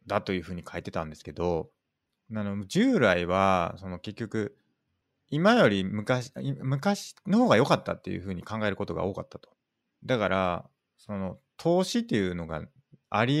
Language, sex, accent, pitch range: Japanese, male, native, 90-125 Hz